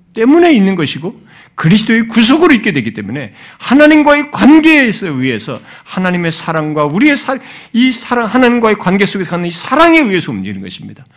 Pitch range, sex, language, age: 135-220 Hz, male, Korean, 50-69